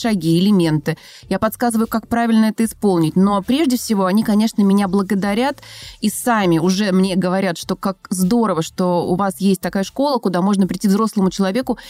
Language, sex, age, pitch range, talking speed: Russian, female, 20-39, 185-230 Hz, 170 wpm